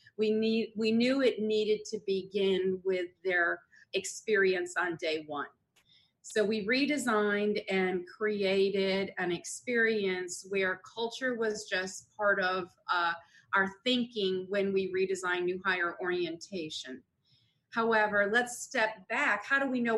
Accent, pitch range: American, 185-220 Hz